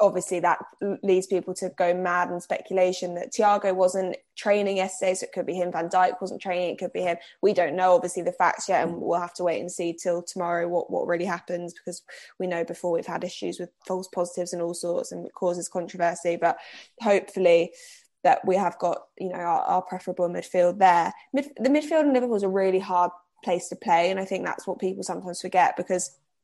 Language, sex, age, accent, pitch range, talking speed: English, female, 10-29, British, 175-190 Hz, 220 wpm